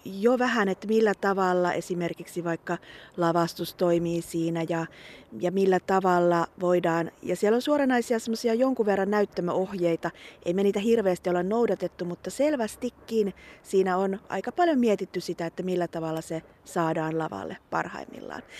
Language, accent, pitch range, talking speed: Finnish, native, 170-205 Hz, 140 wpm